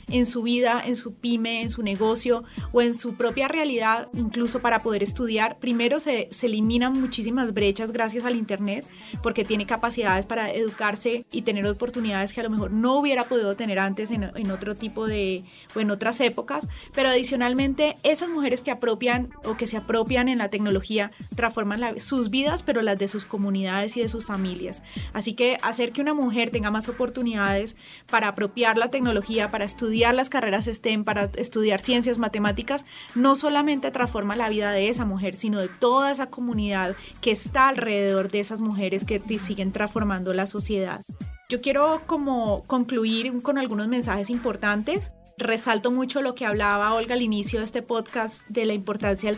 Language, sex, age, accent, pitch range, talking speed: Spanish, female, 20-39, Colombian, 210-245 Hz, 180 wpm